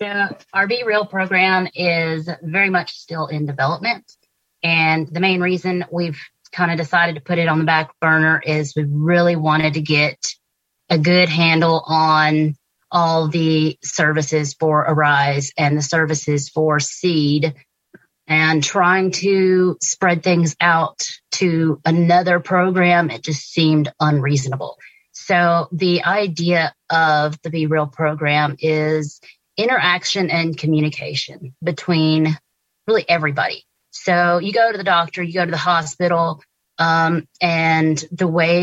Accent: American